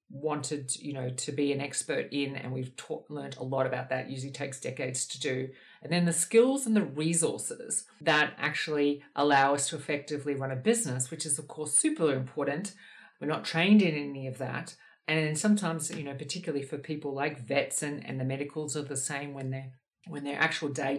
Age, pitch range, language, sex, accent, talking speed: 50-69, 135-160 Hz, English, female, Australian, 210 wpm